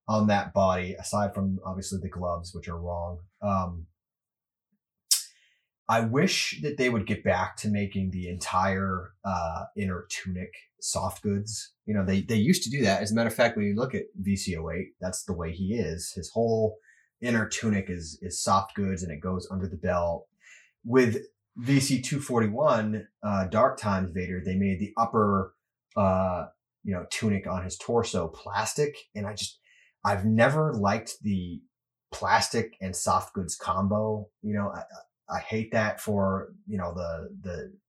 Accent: American